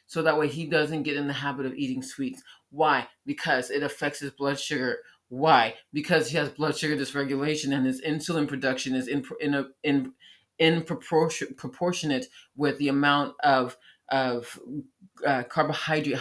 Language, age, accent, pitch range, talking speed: English, 30-49, American, 135-185 Hz, 165 wpm